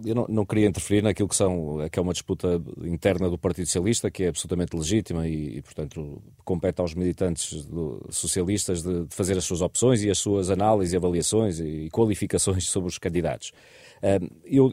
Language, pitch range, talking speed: Portuguese, 90-110 Hz, 185 wpm